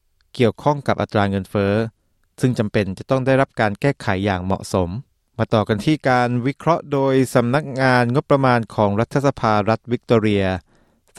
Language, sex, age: Thai, male, 20-39